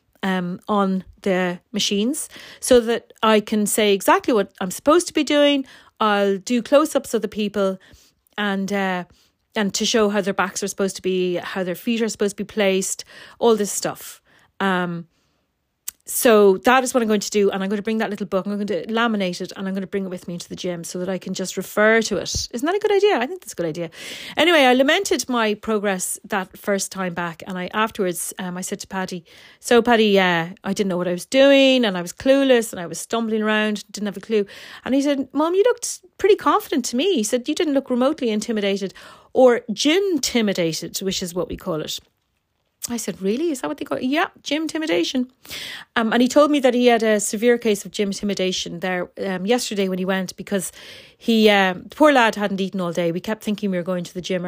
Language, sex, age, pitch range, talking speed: English, female, 30-49, 185-245 Hz, 240 wpm